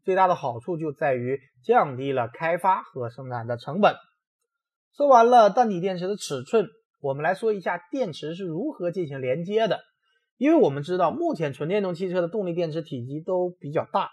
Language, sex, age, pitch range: Chinese, male, 20-39, 140-230 Hz